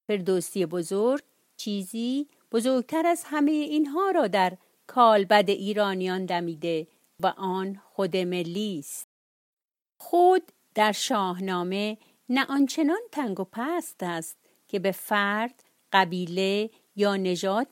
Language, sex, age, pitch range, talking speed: Persian, female, 50-69, 195-260 Hz, 110 wpm